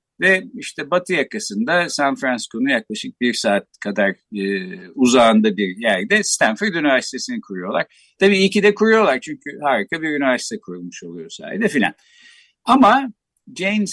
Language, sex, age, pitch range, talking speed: Turkish, male, 60-79, 130-205 Hz, 135 wpm